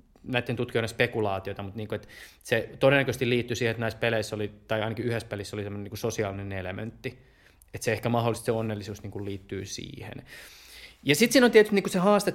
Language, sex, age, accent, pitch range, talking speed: Finnish, male, 20-39, native, 110-140 Hz, 210 wpm